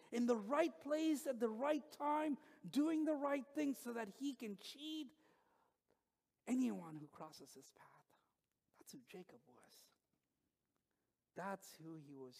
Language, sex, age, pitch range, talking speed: English, male, 50-69, 190-280 Hz, 145 wpm